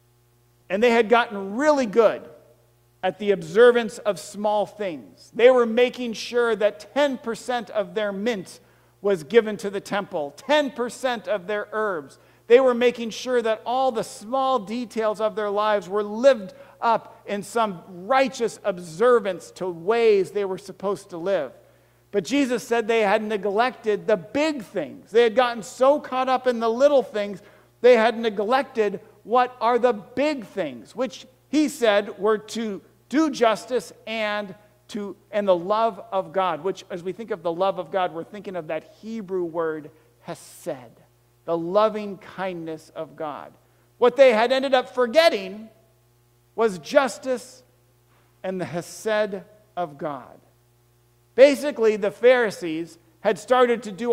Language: English